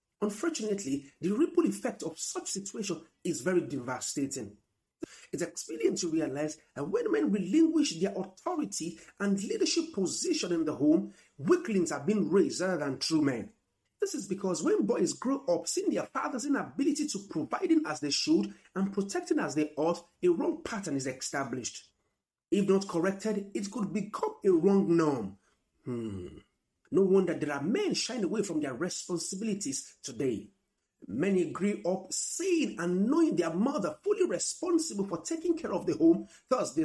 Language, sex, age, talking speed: English, male, 50-69, 165 wpm